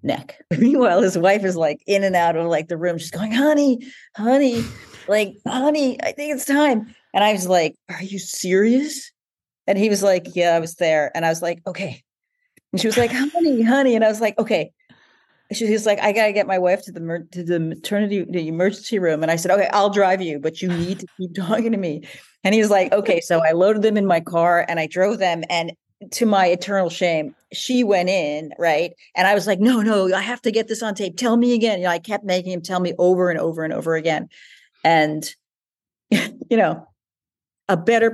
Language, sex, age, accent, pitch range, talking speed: English, female, 40-59, American, 165-220 Hz, 225 wpm